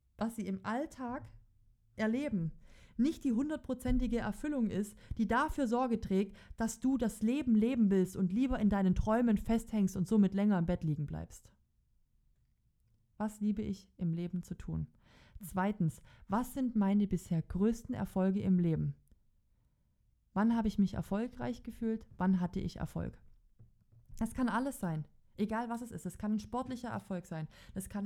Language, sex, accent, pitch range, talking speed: German, female, German, 165-225 Hz, 160 wpm